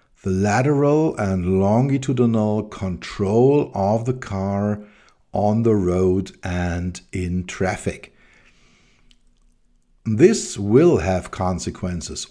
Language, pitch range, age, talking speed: English, 90-115 Hz, 50-69, 85 wpm